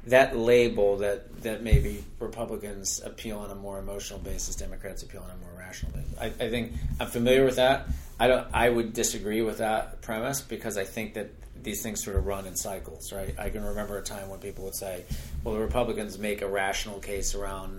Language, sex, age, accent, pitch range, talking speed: English, male, 40-59, American, 95-115 Hz, 215 wpm